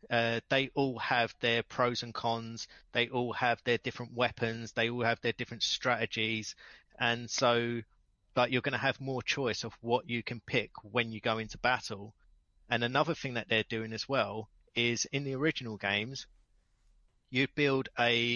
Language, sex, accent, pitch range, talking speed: English, male, British, 110-130 Hz, 180 wpm